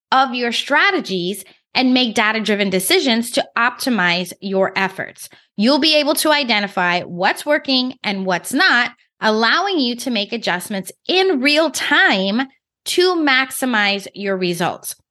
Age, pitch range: 20-39, 195-280 Hz